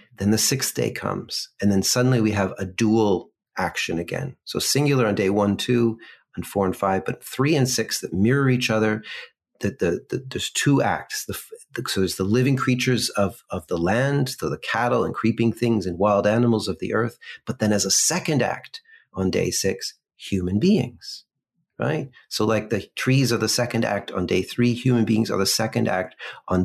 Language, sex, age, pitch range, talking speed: English, male, 40-59, 105-130 Hz, 190 wpm